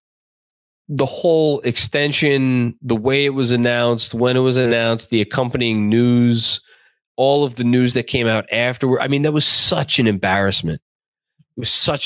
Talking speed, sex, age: 165 wpm, male, 20-39